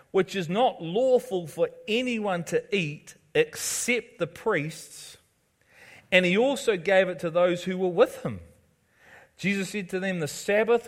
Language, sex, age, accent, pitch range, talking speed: English, male, 40-59, Australian, 150-195 Hz, 155 wpm